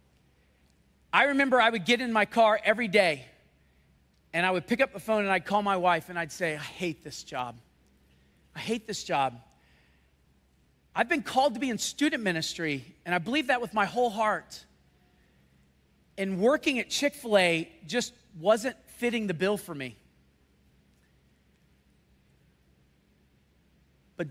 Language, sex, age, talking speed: English, male, 40-59, 150 wpm